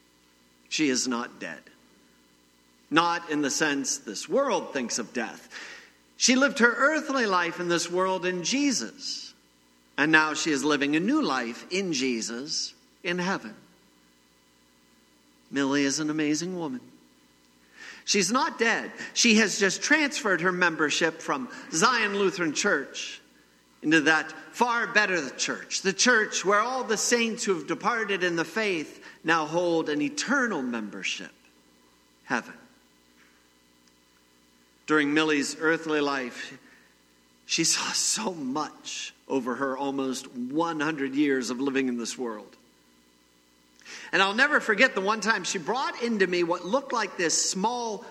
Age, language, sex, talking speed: 50-69, English, male, 135 wpm